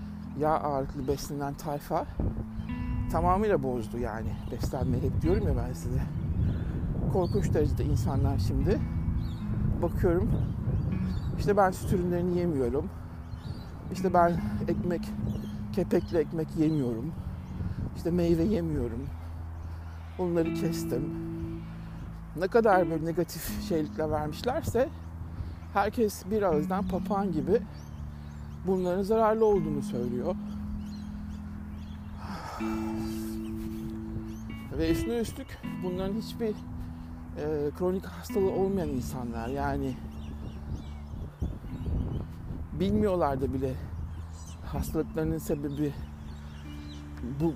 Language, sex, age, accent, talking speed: Turkish, male, 60-79, native, 85 wpm